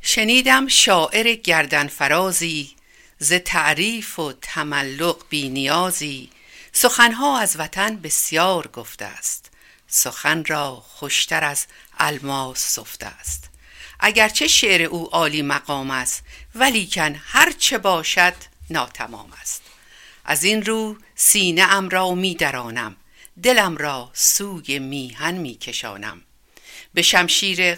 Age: 60-79